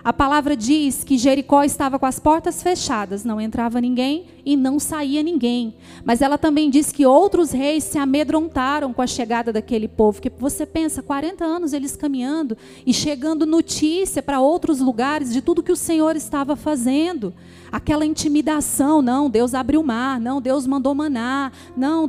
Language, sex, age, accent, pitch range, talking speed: Portuguese, female, 30-49, Brazilian, 245-300 Hz, 170 wpm